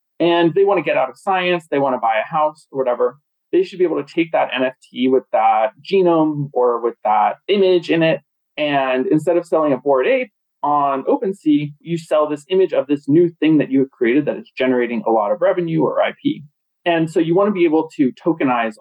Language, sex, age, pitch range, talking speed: English, male, 20-39, 130-180 Hz, 230 wpm